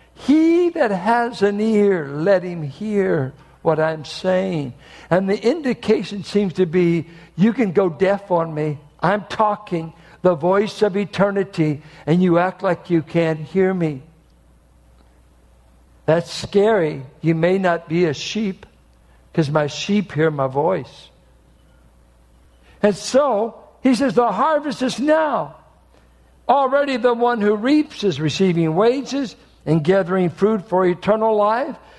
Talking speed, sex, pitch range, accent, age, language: 135 wpm, male, 145-205 Hz, American, 60-79, English